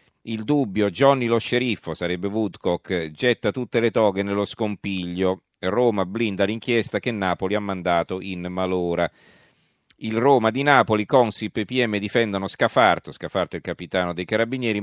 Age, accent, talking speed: 40-59, native, 150 wpm